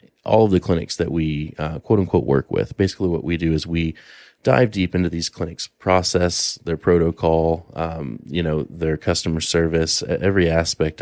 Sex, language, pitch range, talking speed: male, English, 80-90 Hz, 180 wpm